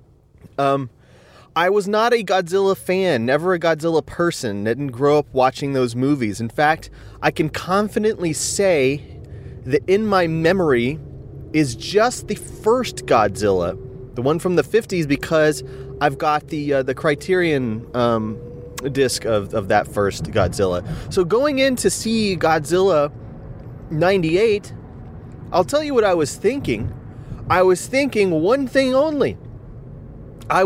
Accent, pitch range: American, 130-200 Hz